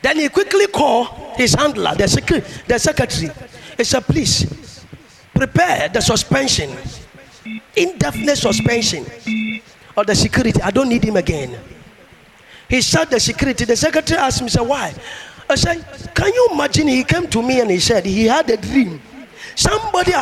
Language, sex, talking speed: English, male, 155 wpm